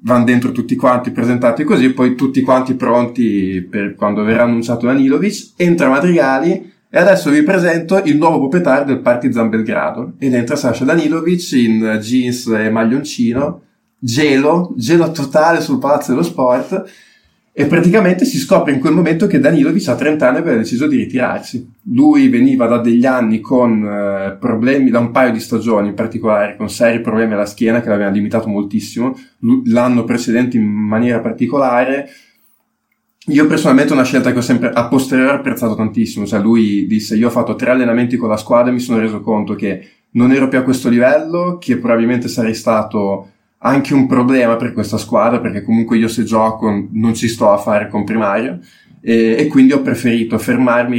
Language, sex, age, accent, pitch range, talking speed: Italian, male, 20-39, native, 110-130 Hz, 175 wpm